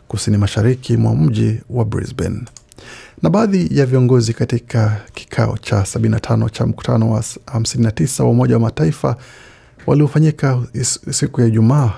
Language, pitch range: Swahili, 110-130 Hz